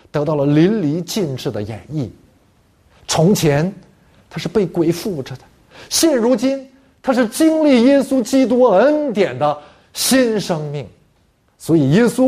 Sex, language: male, Chinese